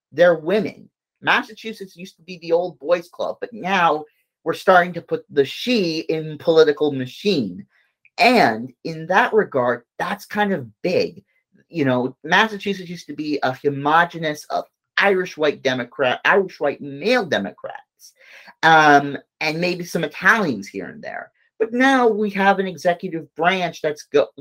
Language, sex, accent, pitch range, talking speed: English, male, American, 150-195 Hz, 150 wpm